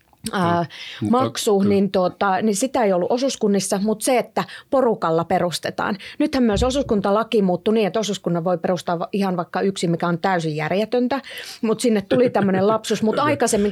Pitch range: 185-235 Hz